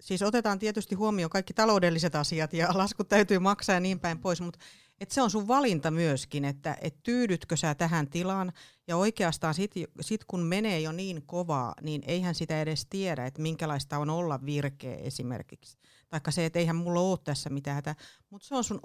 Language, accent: Finnish, native